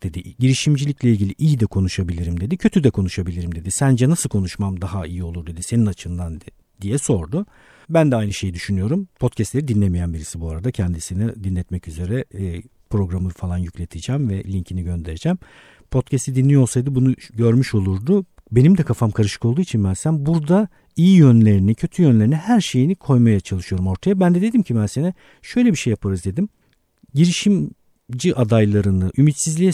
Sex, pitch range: male, 95-140 Hz